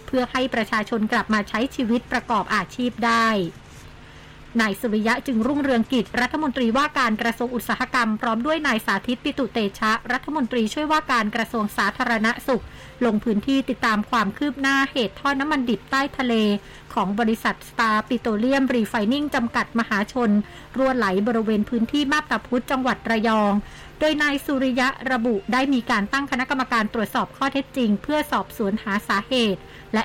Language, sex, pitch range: Thai, female, 220-260 Hz